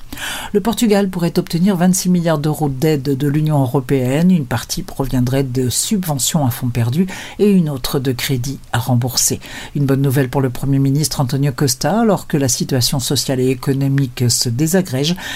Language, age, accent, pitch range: Portuguese, 50-69, French, 125-160 Hz